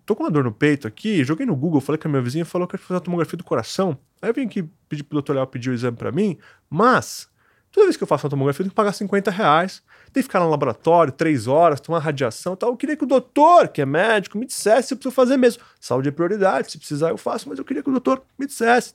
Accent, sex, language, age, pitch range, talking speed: Brazilian, male, Portuguese, 20-39, 150-210 Hz, 290 wpm